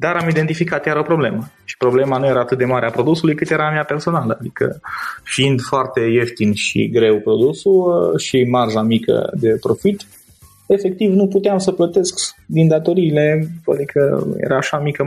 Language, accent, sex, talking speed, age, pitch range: Romanian, native, male, 170 wpm, 20-39, 120-170 Hz